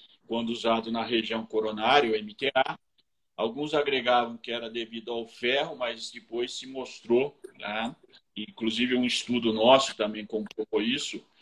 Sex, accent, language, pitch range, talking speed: male, Brazilian, Portuguese, 115-140 Hz, 135 wpm